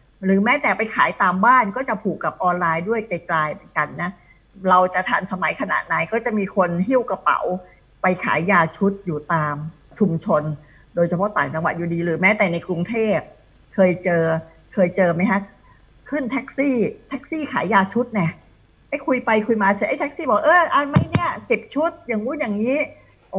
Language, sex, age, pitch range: Thai, female, 60-79, 170-220 Hz